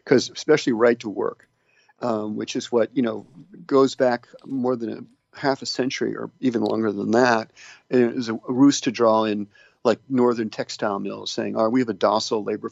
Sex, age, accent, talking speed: male, 50-69, American, 200 wpm